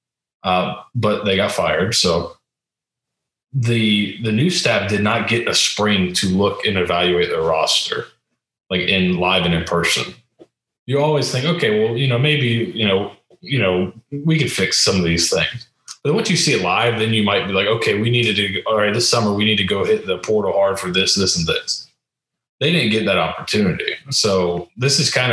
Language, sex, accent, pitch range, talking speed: English, male, American, 95-120 Hz, 210 wpm